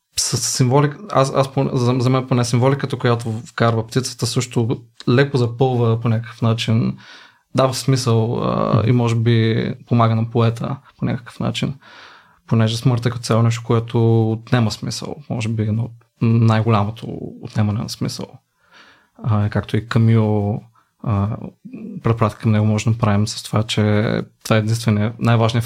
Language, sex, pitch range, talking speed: Bulgarian, male, 110-125 Hz, 145 wpm